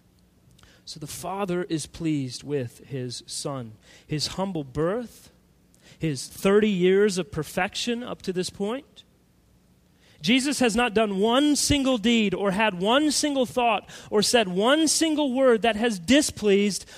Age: 30-49